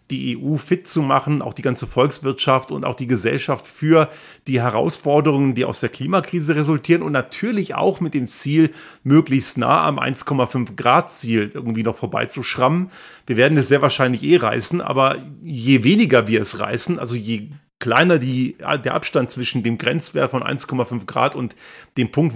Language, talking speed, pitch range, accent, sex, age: German, 165 wpm, 125-160 Hz, German, male, 40-59